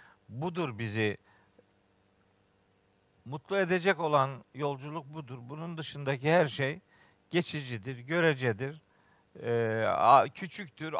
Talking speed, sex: 75 wpm, male